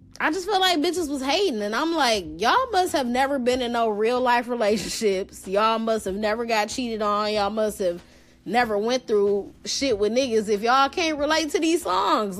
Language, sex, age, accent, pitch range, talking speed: English, female, 20-39, American, 195-265 Hz, 205 wpm